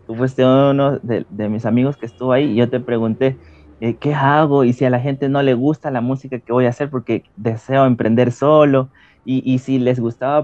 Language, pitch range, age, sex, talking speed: Spanish, 115-150 Hz, 30-49, male, 230 wpm